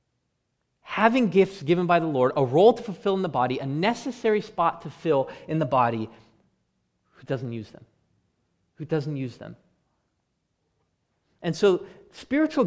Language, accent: English, American